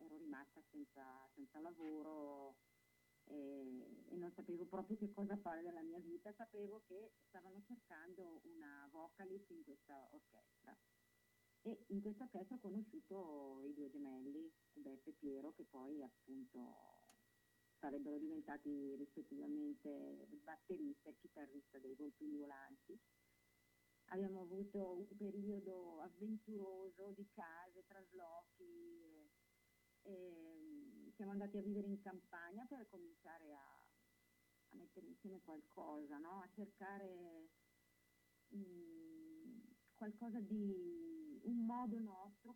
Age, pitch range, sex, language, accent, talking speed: 40-59, 150-215 Hz, female, Italian, native, 115 wpm